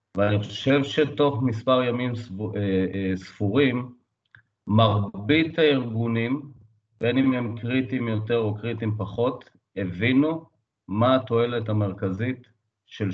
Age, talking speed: 40-59, 110 wpm